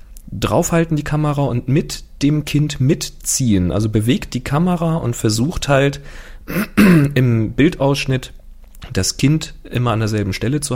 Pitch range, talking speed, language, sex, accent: 105-140 Hz, 135 wpm, German, male, German